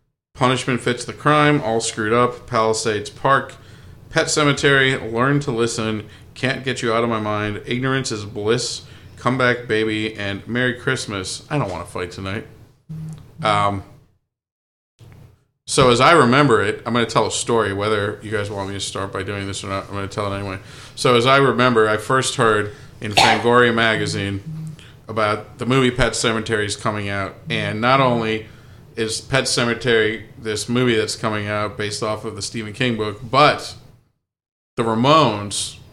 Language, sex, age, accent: English, male, 40-59, American